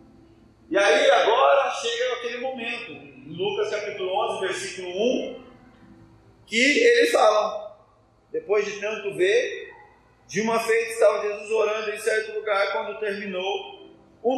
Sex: male